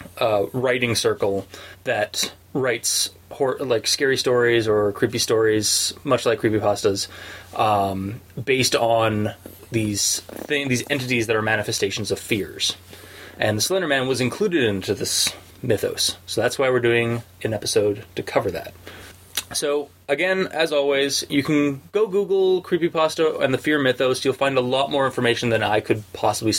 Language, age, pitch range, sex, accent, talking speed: English, 20-39, 100-135 Hz, male, American, 150 wpm